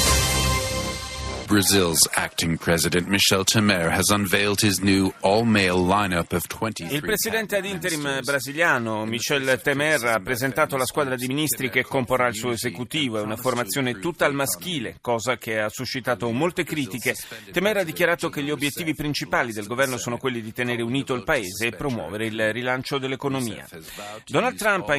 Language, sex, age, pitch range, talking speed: Italian, male, 30-49, 110-145 Hz, 130 wpm